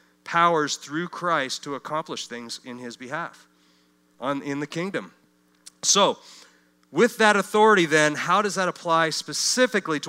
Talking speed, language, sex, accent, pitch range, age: 145 wpm, English, male, American, 130-170 Hz, 40-59